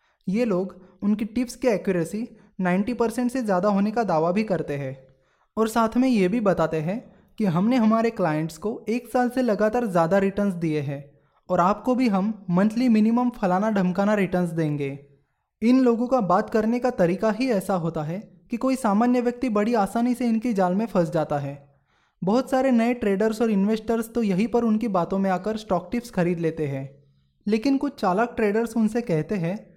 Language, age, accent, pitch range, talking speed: Hindi, 20-39, native, 175-235 Hz, 190 wpm